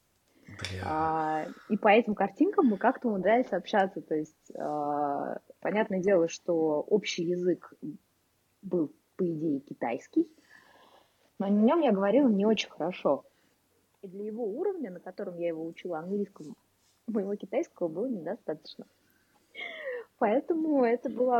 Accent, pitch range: native, 175-240 Hz